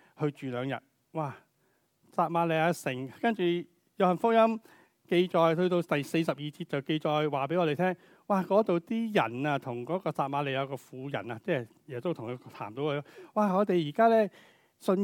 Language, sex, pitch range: Chinese, male, 135-180 Hz